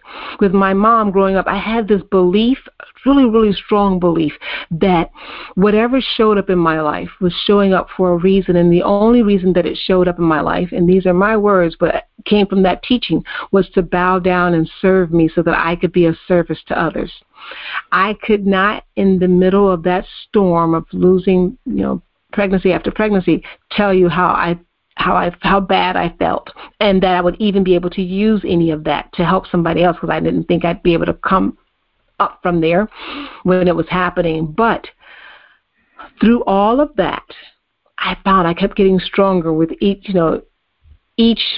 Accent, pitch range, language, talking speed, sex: American, 175-215 Hz, English, 200 wpm, female